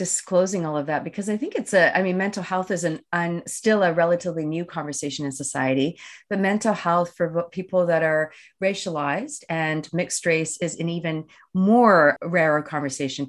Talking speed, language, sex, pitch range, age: 180 wpm, English, female, 150-185 Hz, 30-49